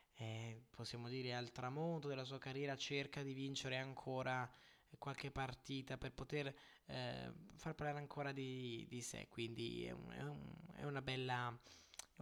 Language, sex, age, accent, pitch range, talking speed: Italian, male, 20-39, native, 120-145 Hz, 145 wpm